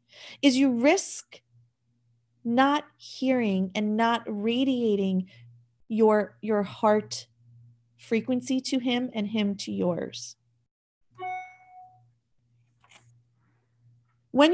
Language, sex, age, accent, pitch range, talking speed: English, female, 30-49, American, 190-250 Hz, 80 wpm